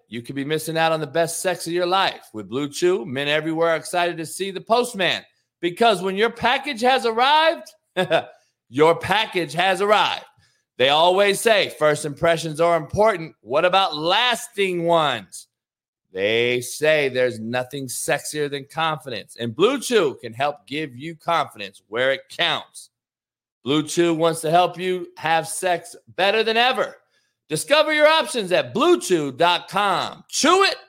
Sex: male